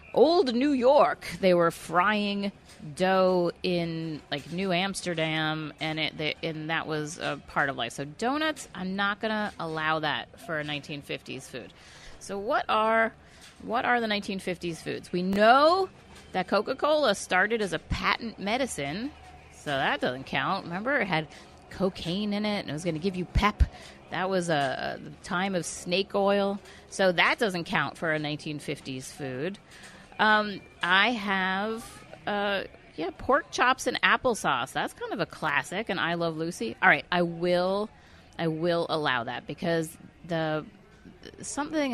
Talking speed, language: 160 wpm, English